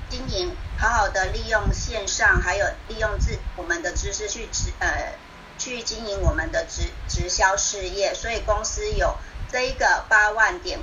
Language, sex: Chinese, male